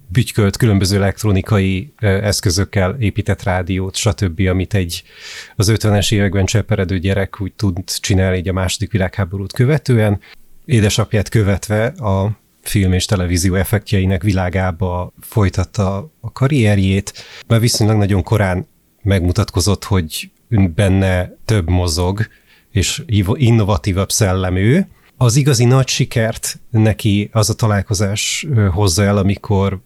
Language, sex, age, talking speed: Hungarian, male, 30-49, 115 wpm